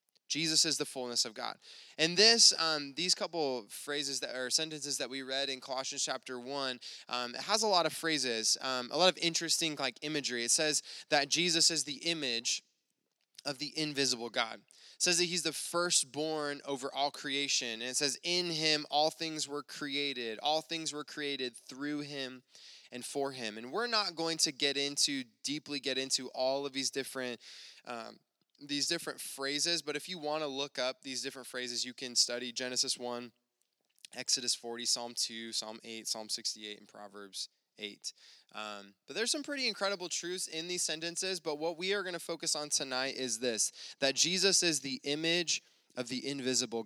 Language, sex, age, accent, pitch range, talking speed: English, male, 20-39, American, 125-160 Hz, 190 wpm